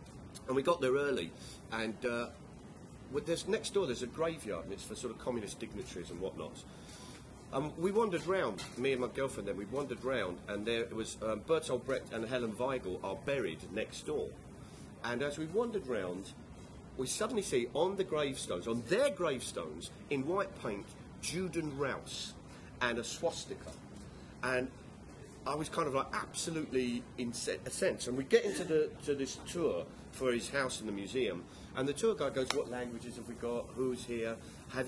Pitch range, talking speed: 120-145 Hz, 190 wpm